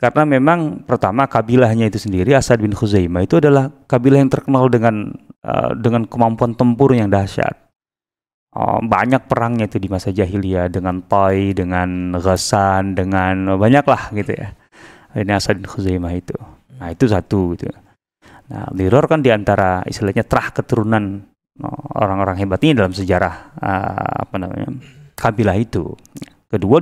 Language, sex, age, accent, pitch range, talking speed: Indonesian, male, 30-49, native, 100-135 Hz, 145 wpm